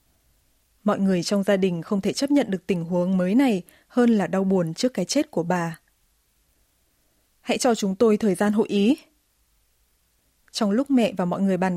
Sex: female